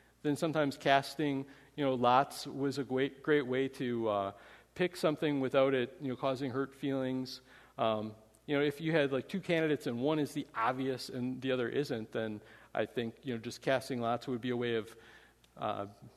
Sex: male